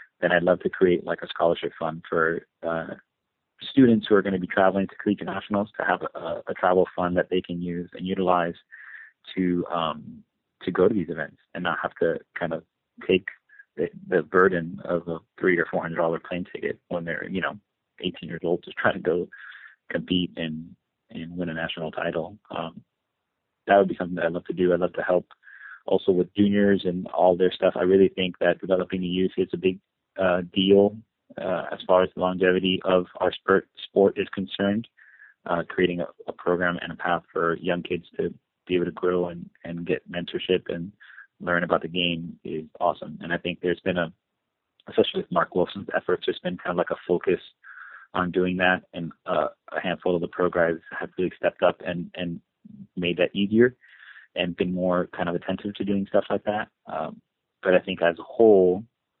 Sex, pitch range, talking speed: male, 85-95 Hz, 205 wpm